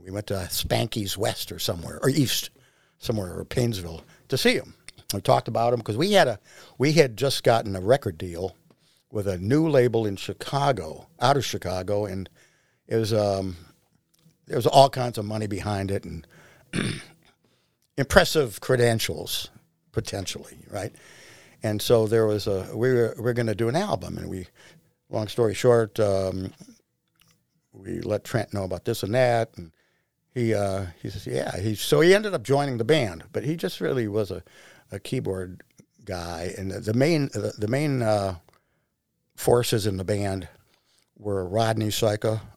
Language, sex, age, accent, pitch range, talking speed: English, male, 60-79, American, 95-115 Hz, 170 wpm